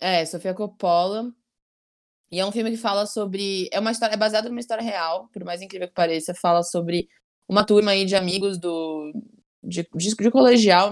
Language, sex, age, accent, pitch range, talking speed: Portuguese, female, 20-39, Brazilian, 170-210 Hz, 190 wpm